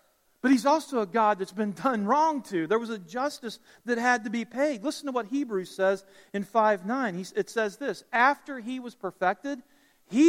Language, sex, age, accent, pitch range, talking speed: English, male, 40-59, American, 200-255 Hz, 200 wpm